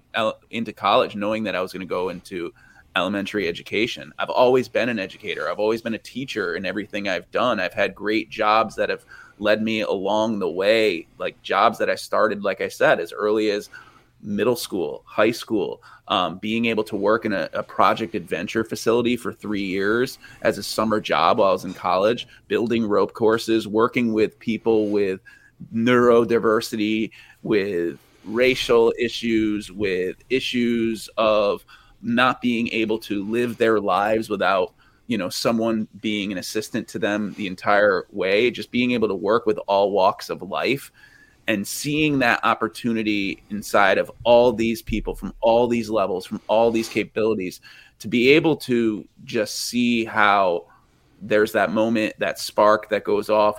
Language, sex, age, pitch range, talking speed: English, male, 20-39, 105-120 Hz, 170 wpm